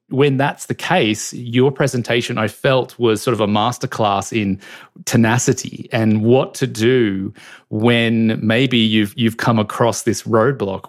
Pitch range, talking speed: 105-120 Hz, 150 wpm